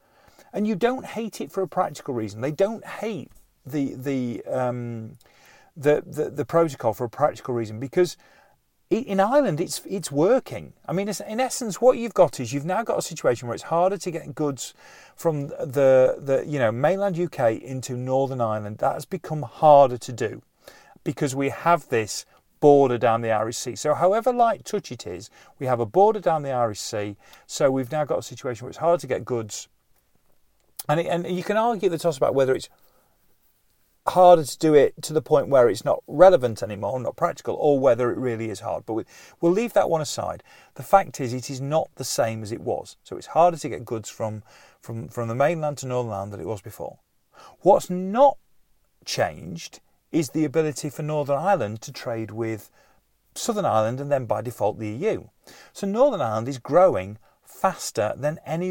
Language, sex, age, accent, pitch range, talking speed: English, male, 40-59, British, 125-180 Hz, 200 wpm